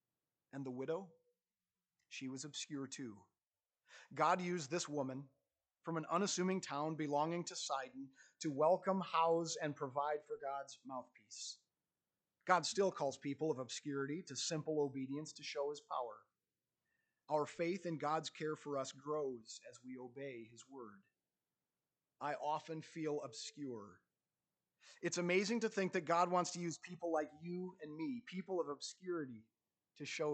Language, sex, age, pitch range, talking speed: English, male, 30-49, 130-160 Hz, 150 wpm